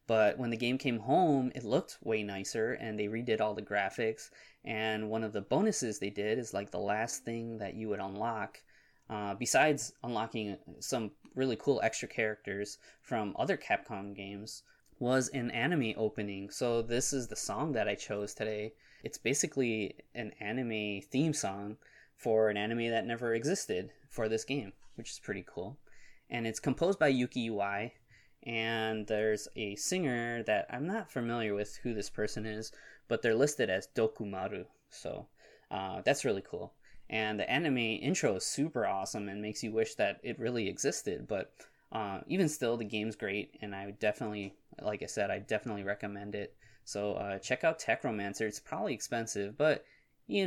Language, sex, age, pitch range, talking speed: English, male, 20-39, 105-120 Hz, 175 wpm